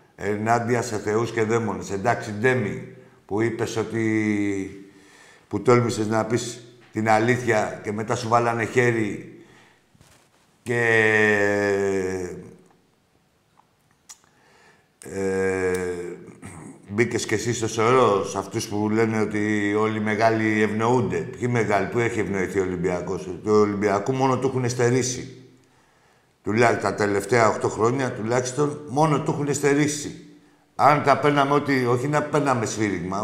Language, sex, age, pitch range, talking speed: Greek, male, 60-79, 105-130 Hz, 125 wpm